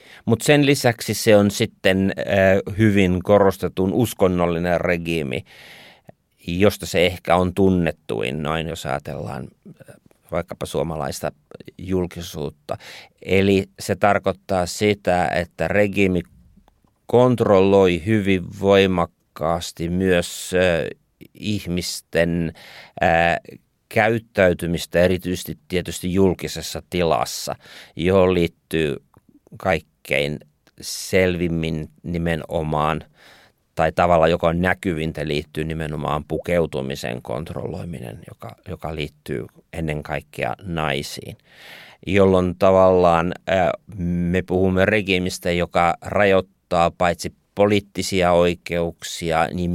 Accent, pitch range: native, 80-95 Hz